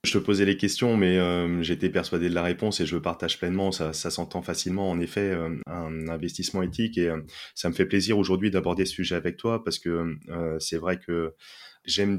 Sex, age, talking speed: male, 20-39, 220 wpm